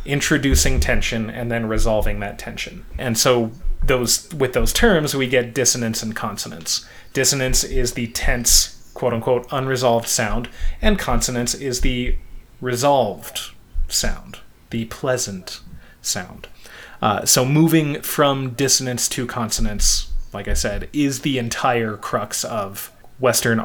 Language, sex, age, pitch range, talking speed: English, male, 30-49, 110-130 Hz, 125 wpm